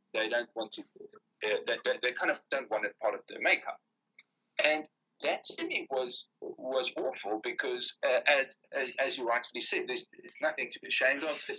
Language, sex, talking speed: English, male, 205 wpm